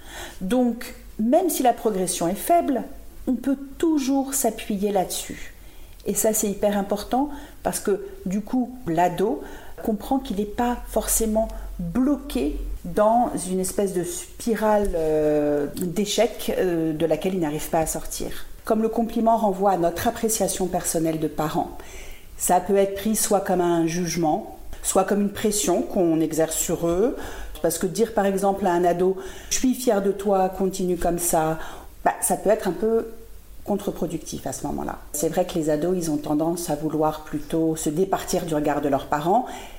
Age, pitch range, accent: 50-69, 175-245 Hz, French